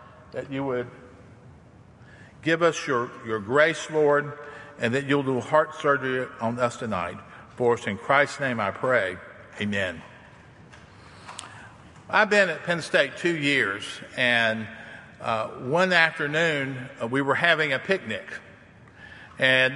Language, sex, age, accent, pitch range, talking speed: English, male, 50-69, American, 120-165 Hz, 135 wpm